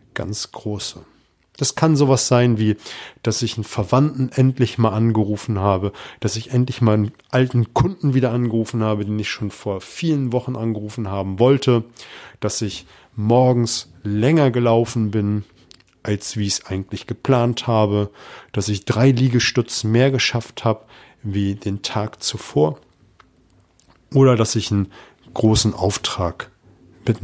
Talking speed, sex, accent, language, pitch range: 145 wpm, male, German, German, 100-125 Hz